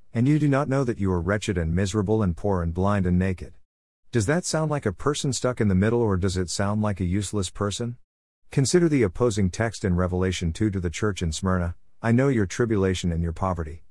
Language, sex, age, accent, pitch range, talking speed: English, male, 50-69, American, 90-125 Hz, 235 wpm